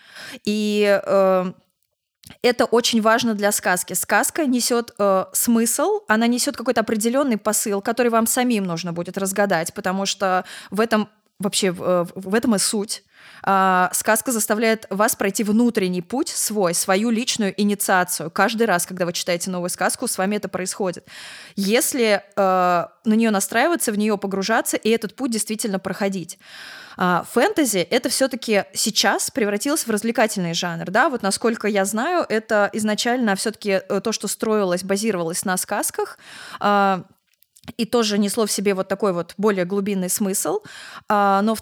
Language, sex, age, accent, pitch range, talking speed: Russian, female, 20-39, native, 190-225 Hz, 145 wpm